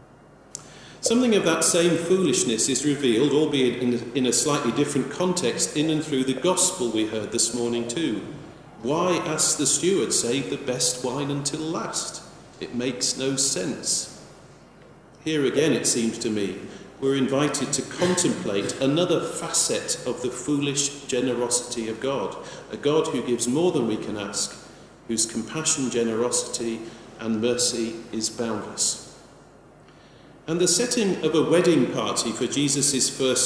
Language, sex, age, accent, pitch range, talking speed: English, male, 40-59, British, 115-145 Hz, 145 wpm